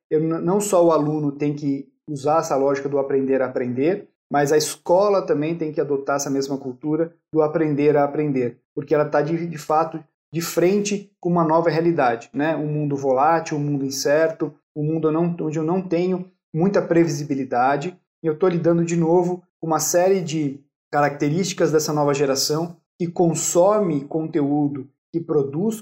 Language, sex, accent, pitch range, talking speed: Portuguese, male, Brazilian, 145-170 Hz, 170 wpm